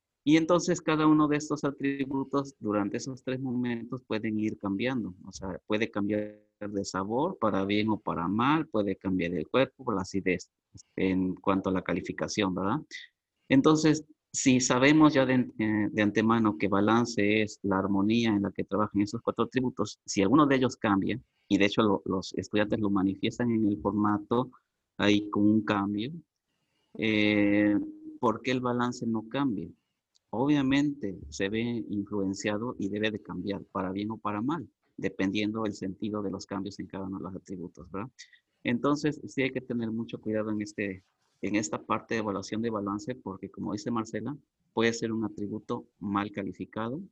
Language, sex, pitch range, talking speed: English, male, 100-120 Hz, 170 wpm